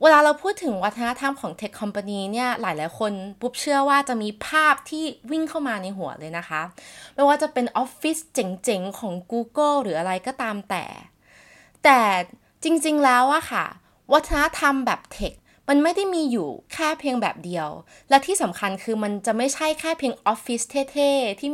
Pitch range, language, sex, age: 210-285 Hz, Thai, female, 20-39